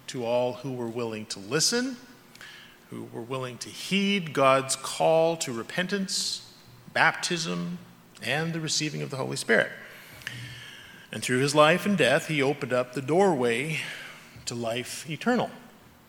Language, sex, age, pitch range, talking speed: English, male, 40-59, 125-185 Hz, 140 wpm